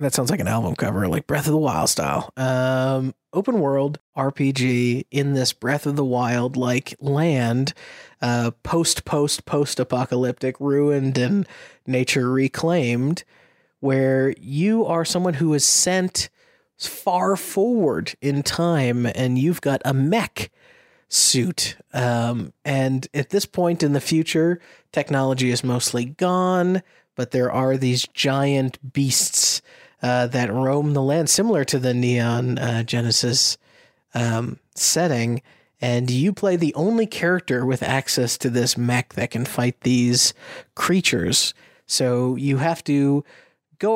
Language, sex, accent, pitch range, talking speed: English, male, American, 125-155 Hz, 135 wpm